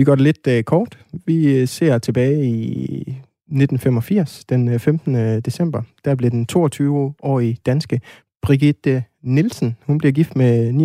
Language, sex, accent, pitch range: Danish, male, native, 120-145 Hz